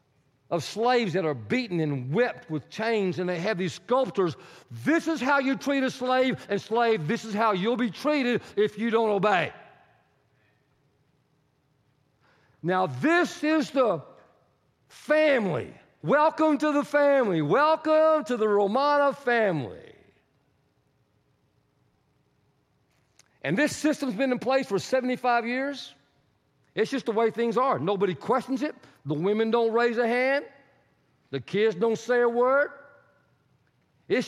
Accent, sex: American, male